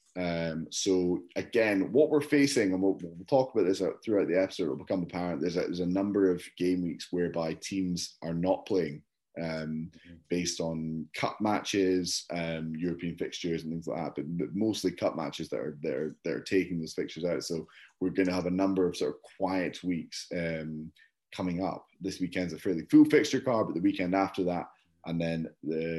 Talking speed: 200 wpm